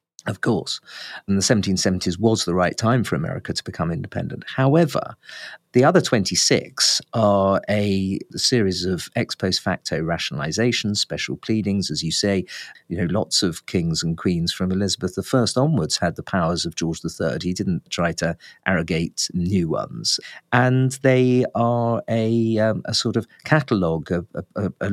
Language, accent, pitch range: English, British, 95-125 Hz